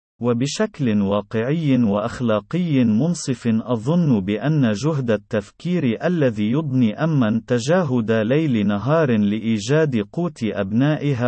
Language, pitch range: Arabic, 110-150 Hz